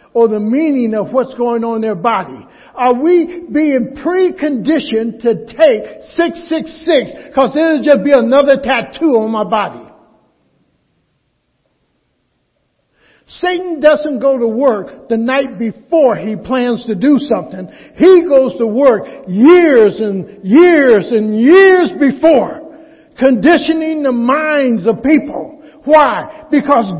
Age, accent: 60-79, American